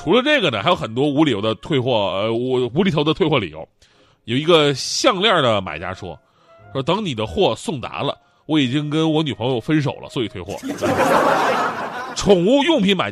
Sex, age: male, 30-49